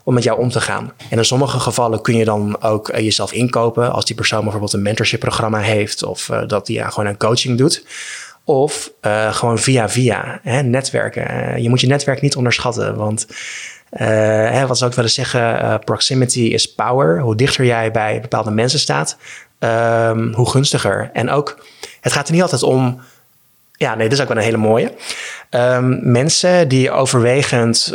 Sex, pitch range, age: male, 110-130 Hz, 20-39